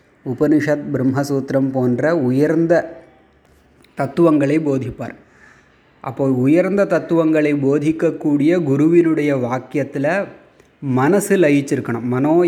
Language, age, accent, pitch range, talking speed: Tamil, 30-49, native, 130-155 Hz, 70 wpm